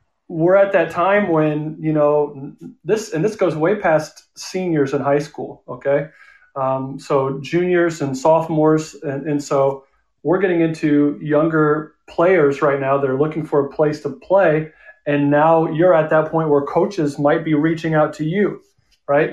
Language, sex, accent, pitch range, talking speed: English, male, American, 145-170 Hz, 170 wpm